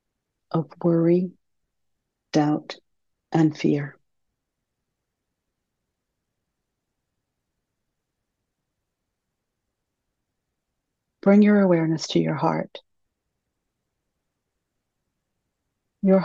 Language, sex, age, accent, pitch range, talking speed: English, female, 60-79, American, 150-180 Hz, 45 wpm